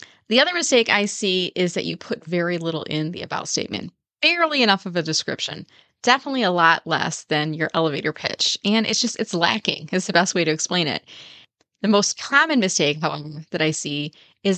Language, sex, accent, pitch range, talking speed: English, female, American, 170-235 Hz, 200 wpm